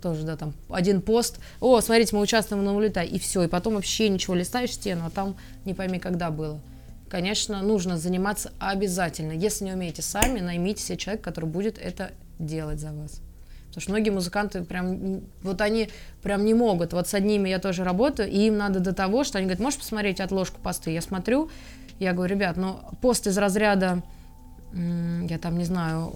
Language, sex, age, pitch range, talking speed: Russian, female, 20-39, 170-210 Hz, 195 wpm